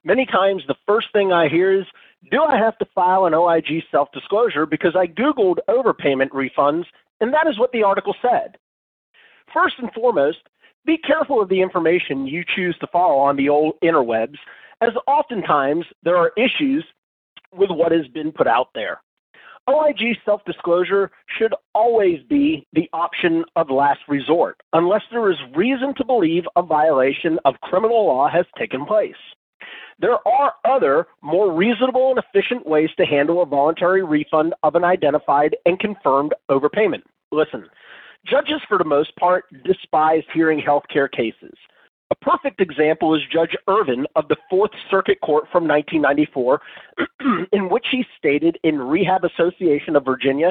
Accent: American